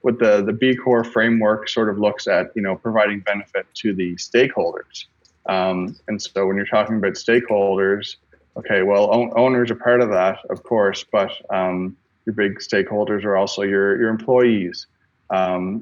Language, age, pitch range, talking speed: English, 20-39, 95-110 Hz, 175 wpm